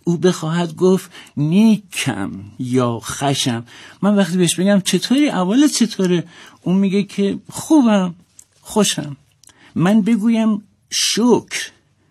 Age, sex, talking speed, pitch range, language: 60-79, male, 105 wpm, 150-200 Hz, Persian